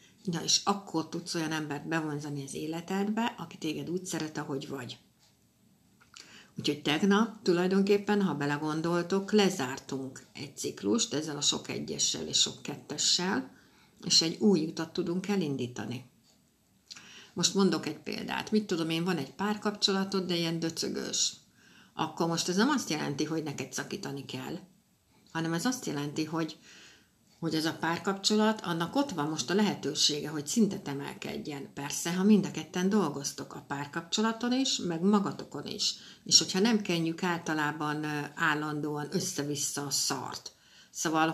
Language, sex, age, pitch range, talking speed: Hungarian, female, 60-79, 150-195 Hz, 145 wpm